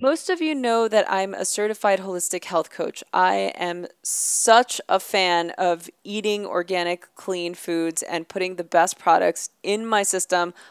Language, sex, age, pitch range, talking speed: English, female, 20-39, 170-195 Hz, 165 wpm